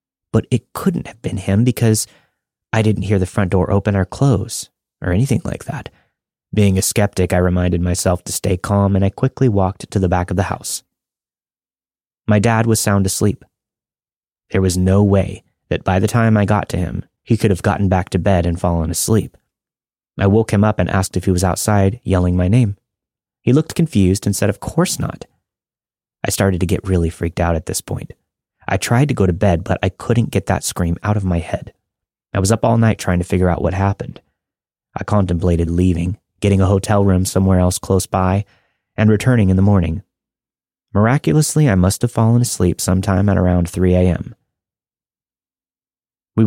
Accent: American